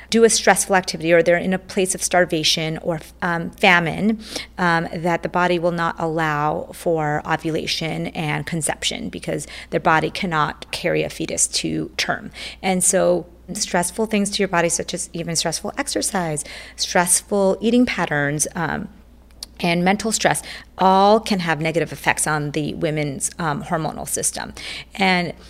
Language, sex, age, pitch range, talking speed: English, female, 30-49, 165-220 Hz, 155 wpm